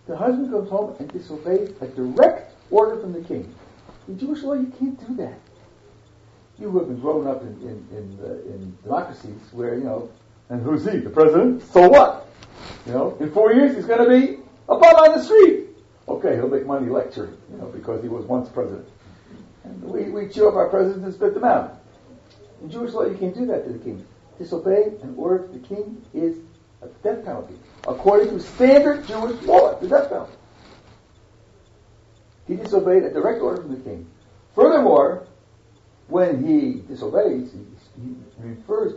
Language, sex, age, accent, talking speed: English, male, 60-79, American, 180 wpm